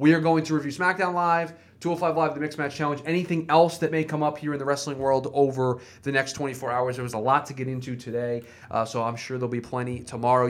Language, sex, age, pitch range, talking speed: English, male, 20-39, 120-150 Hz, 265 wpm